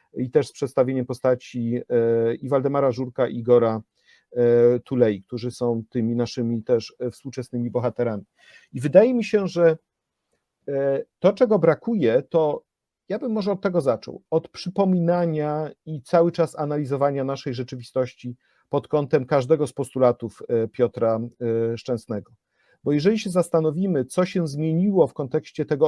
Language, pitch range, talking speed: Polish, 125-165 Hz, 135 wpm